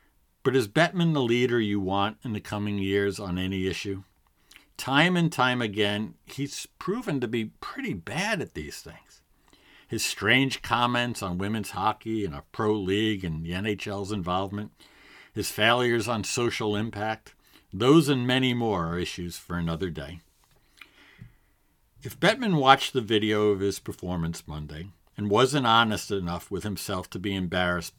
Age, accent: 50-69, American